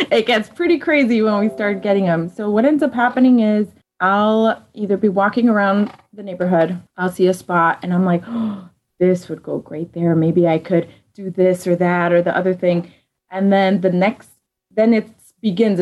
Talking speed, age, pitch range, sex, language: 195 wpm, 20-39, 175-210 Hz, female, English